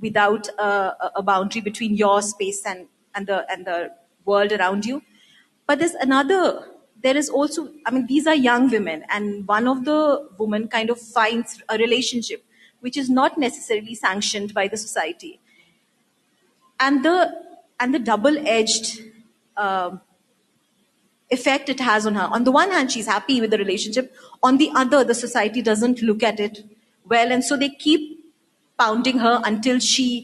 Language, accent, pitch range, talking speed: English, Indian, 220-285 Hz, 165 wpm